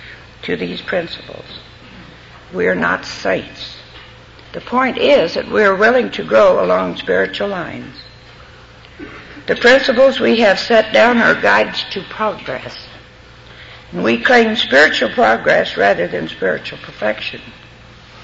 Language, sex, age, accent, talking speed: English, female, 60-79, American, 125 wpm